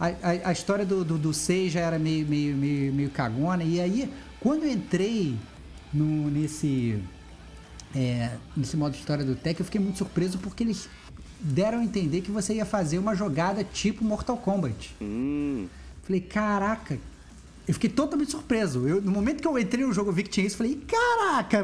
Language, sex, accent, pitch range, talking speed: Portuguese, male, Brazilian, 150-215 Hz, 190 wpm